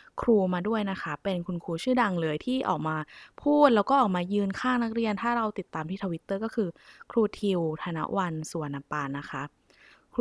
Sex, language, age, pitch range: female, Thai, 20-39, 165-225 Hz